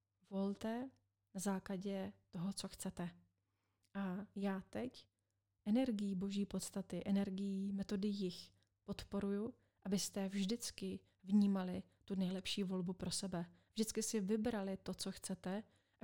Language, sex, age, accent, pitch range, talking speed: Czech, female, 30-49, native, 185-205 Hz, 115 wpm